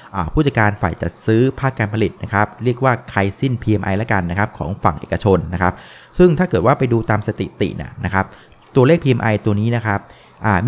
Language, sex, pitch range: Thai, male, 95-120 Hz